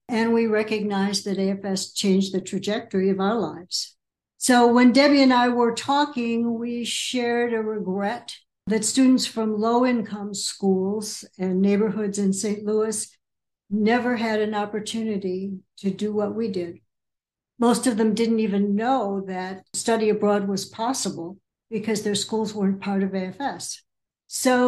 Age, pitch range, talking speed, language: 60-79, 200-235 Hz, 145 wpm, English